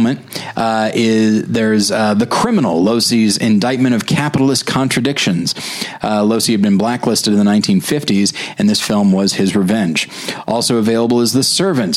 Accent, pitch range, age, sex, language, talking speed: American, 105-130 Hz, 30-49, male, English, 150 wpm